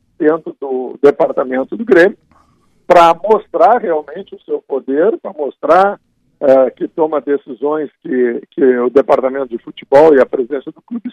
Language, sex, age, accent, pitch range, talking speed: Portuguese, male, 60-79, Brazilian, 145-220 Hz, 145 wpm